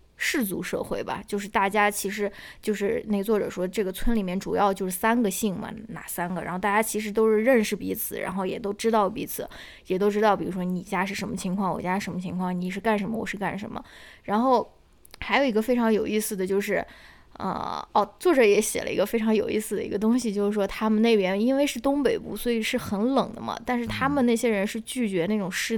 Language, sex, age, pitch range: Chinese, female, 20-39, 200-230 Hz